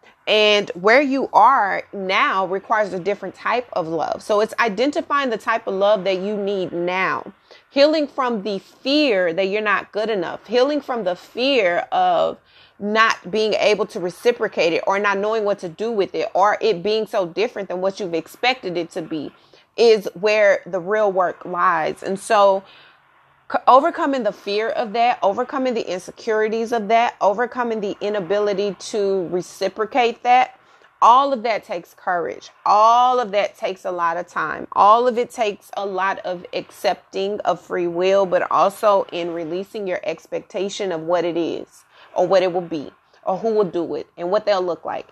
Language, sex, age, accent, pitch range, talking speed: English, female, 30-49, American, 185-235 Hz, 180 wpm